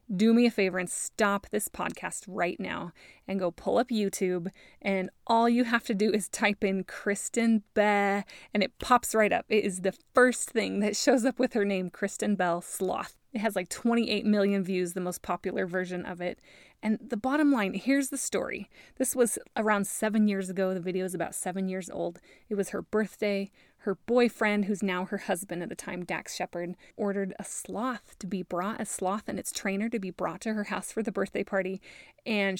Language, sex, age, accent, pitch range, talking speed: English, female, 20-39, American, 195-235 Hz, 210 wpm